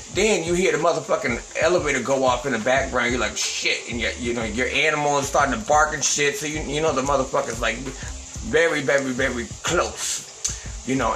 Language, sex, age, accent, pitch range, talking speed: English, male, 30-49, American, 135-175 Hz, 205 wpm